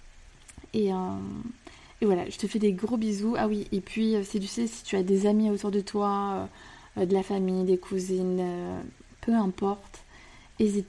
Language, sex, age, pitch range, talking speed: French, female, 20-39, 185-210 Hz, 180 wpm